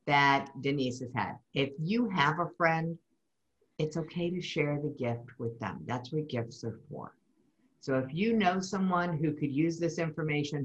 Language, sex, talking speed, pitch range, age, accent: English, female, 180 wpm, 140-225 Hz, 50-69, American